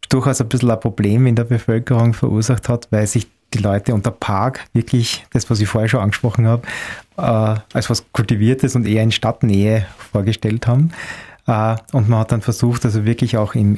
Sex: male